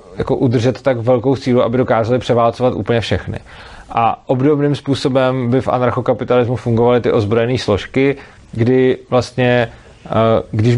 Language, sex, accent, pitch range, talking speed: Czech, male, native, 120-140 Hz, 130 wpm